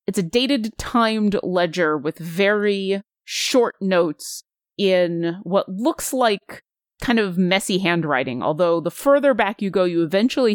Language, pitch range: English, 175-235 Hz